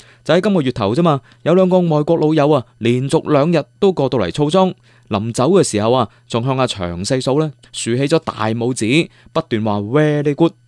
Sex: male